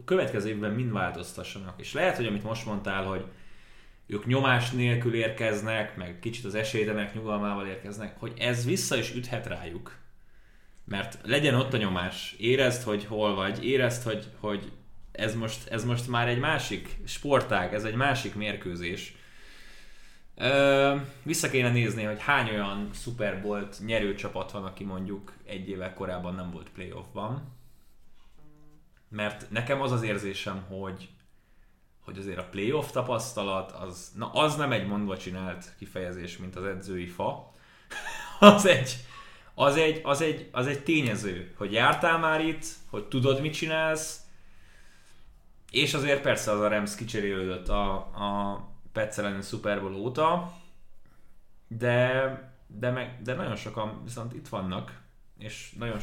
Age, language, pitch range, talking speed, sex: 20-39, Hungarian, 100-125 Hz, 145 wpm, male